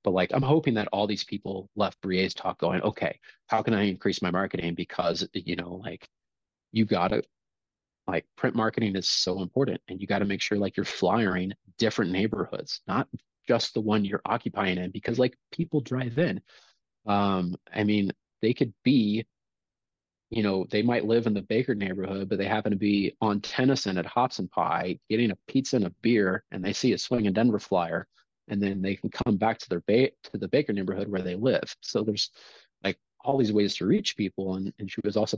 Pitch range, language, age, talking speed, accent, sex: 95-115 Hz, English, 30-49, 205 wpm, American, male